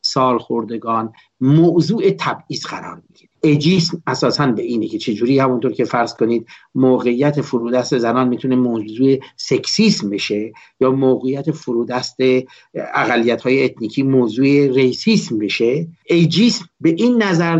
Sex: male